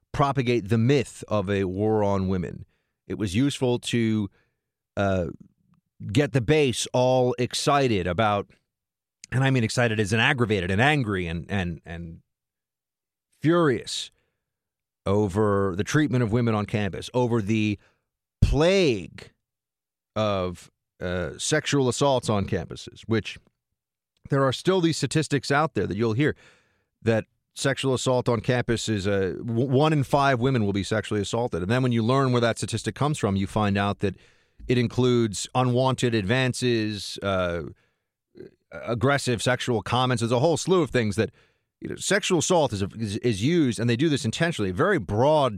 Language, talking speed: English, 160 wpm